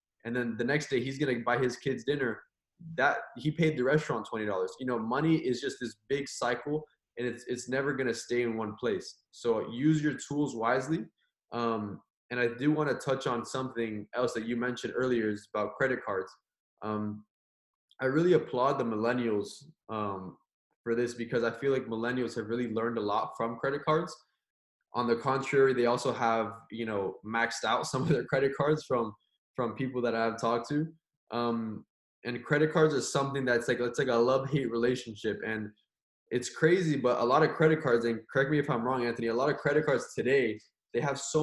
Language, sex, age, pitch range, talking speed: English, male, 20-39, 115-140 Hz, 205 wpm